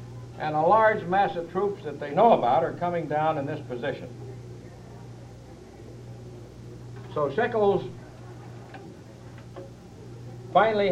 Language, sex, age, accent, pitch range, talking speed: English, male, 60-79, American, 120-180 Hz, 105 wpm